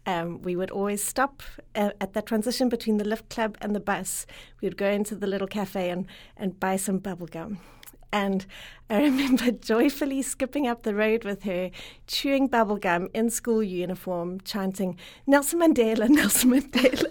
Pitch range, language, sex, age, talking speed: 180-230 Hz, English, female, 30-49, 170 wpm